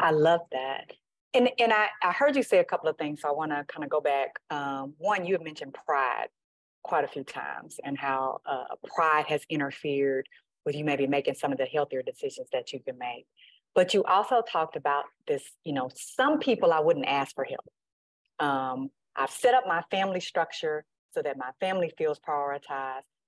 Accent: American